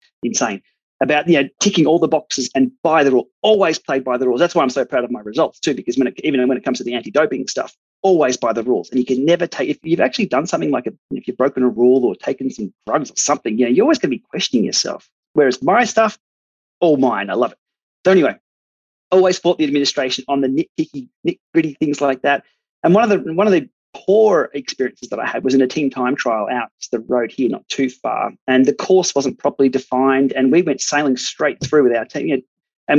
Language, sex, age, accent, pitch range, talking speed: English, male, 30-49, Australian, 130-185 Hz, 245 wpm